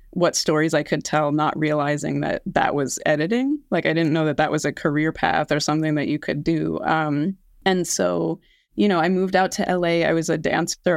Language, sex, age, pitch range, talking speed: English, female, 20-39, 150-170 Hz, 225 wpm